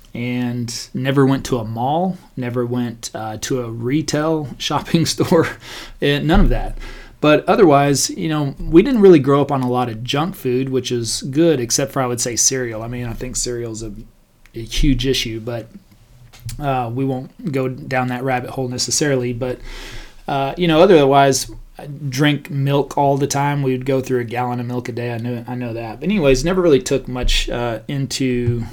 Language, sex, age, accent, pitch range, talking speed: English, male, 30-49, American, 120-140 Hz, 195 wpm